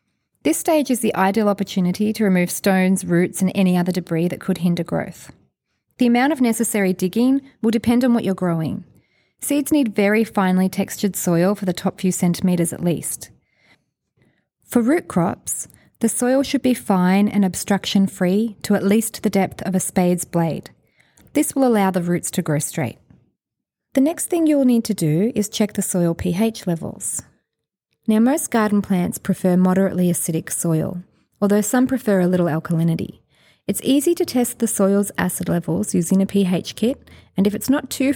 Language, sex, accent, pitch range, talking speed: English, female, Australian, 180-230 Hz, 180 wpm